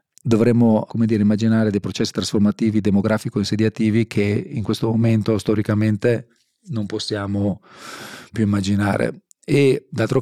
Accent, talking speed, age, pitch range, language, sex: native, 110 wpm, 40-59, 105-115 Hz, Italian, male